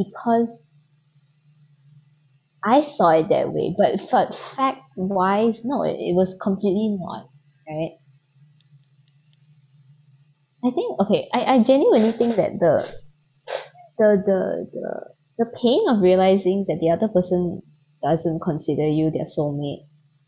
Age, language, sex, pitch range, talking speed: 20-39, English, female, 145-185 Hz, 120 wpm